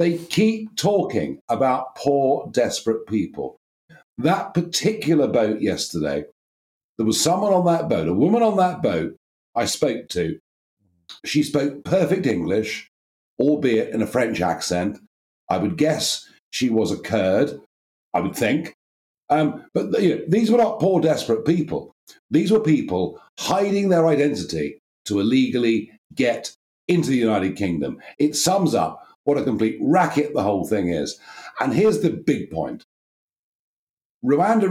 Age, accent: 50-69, British